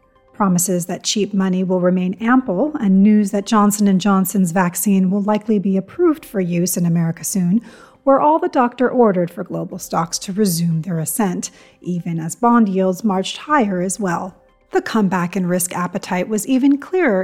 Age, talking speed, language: 40-59, 175 wpm, English